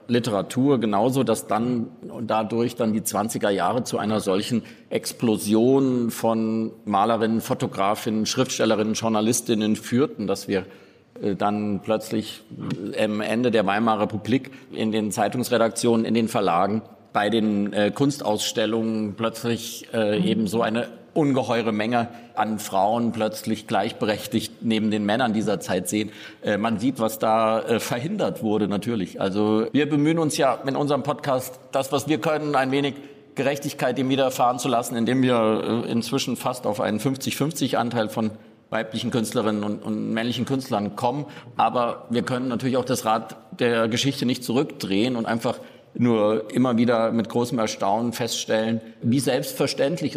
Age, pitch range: 50-69, 110-130 Hz